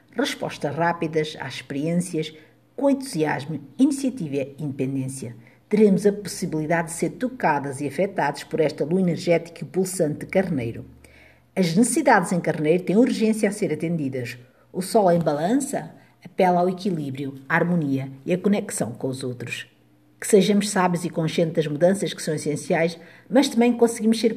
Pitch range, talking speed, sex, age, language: 150-195 Hz, 155 wpm, female, 50-69, Portuguese